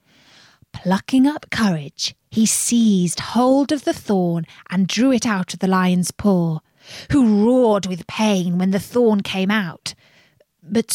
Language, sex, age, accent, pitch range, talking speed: English, female, 30-49, British, 175-240 Hz, 150 wpm